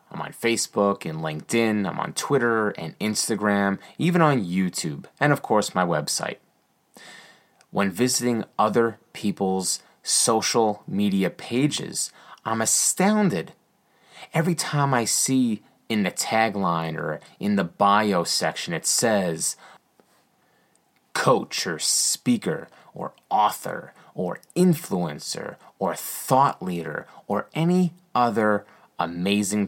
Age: 30-49